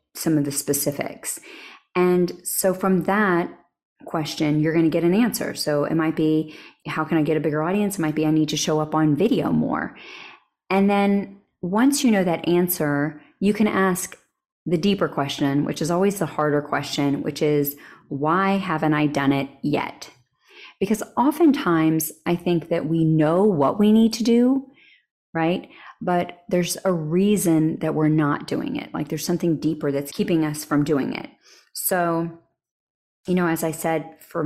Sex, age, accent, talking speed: female, 30-49, American, 180 wpm